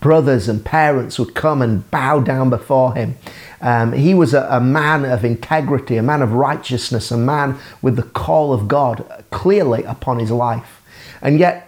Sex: male